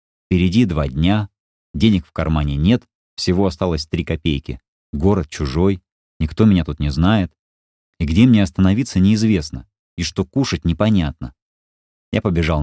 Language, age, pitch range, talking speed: Russian, 30-49, 80-105 Hz, 140 wpm